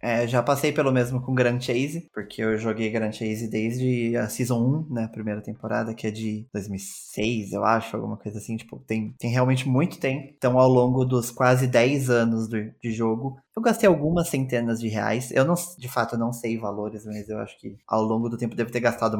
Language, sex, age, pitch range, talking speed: Portuguese, male, 20-39, 110-135 Hz, 220 wpm